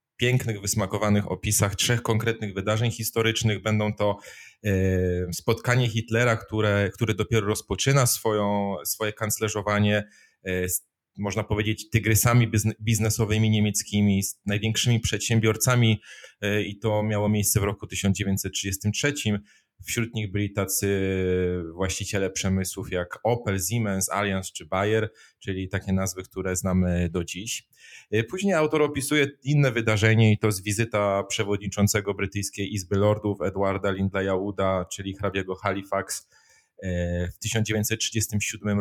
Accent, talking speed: native, 115 wpm